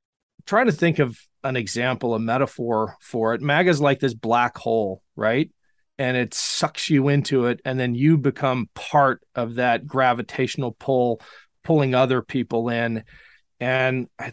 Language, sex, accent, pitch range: English, male, American, 115-150 Hz